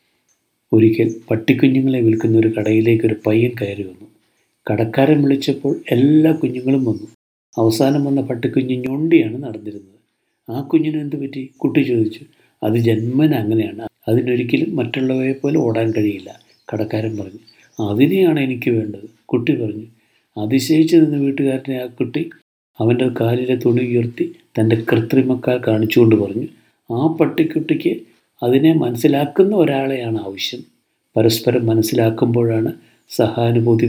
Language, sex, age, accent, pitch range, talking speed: Malayalam, male, 50-69, native, 115-140 Hz, 105 wpm